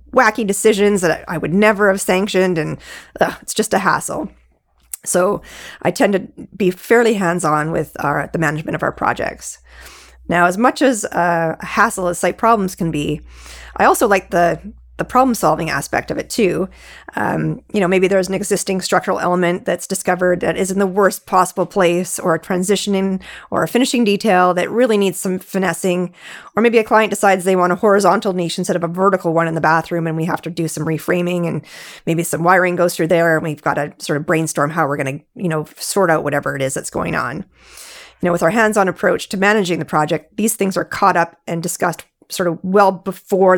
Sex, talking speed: female, 215 wpm